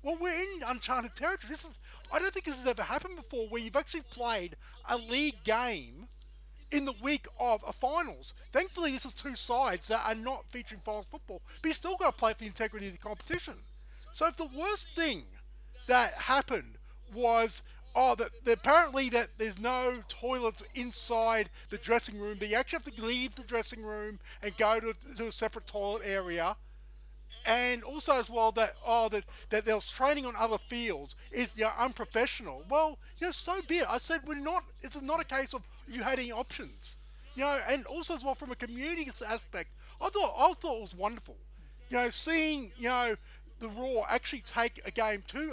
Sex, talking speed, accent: male, 200 wpm, Australian